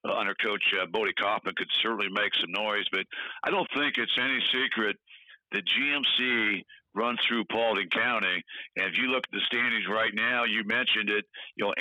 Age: 60-79